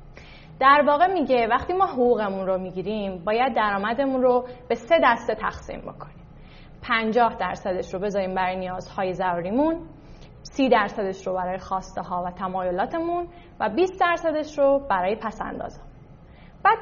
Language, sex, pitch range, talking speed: Persian, female, 190-300 Hz, 130 wpm